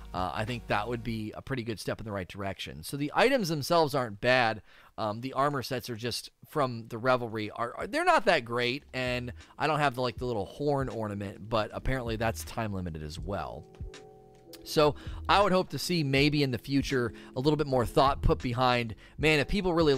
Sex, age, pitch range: male, 30-49, 105-130 Hz